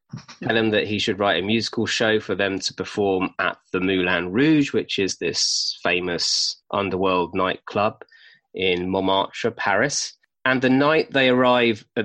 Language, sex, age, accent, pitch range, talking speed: English, male, 20-39, British, 95-120 Hz, 160 wpm